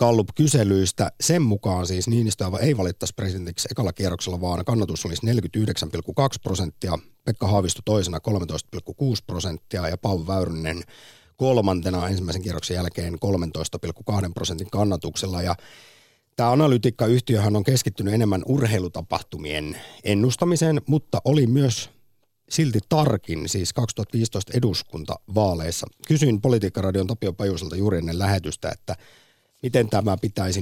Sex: male